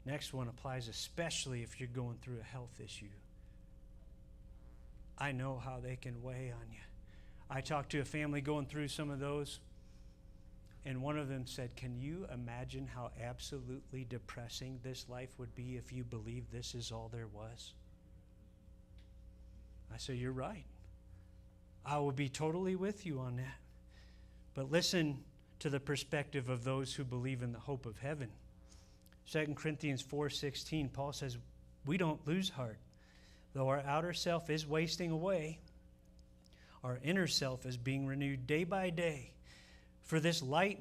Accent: American